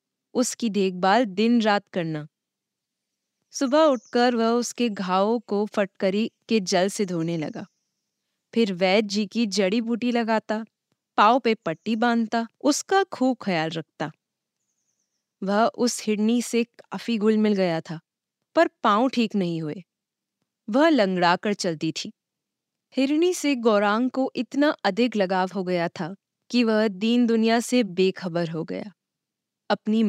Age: 20-39